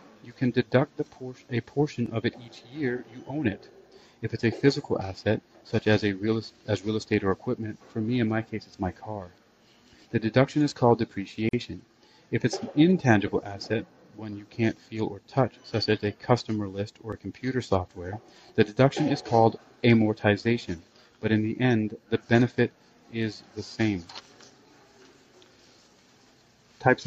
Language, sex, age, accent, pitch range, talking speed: English, male, 40-59, American, 110-125 Hz, 160 wpm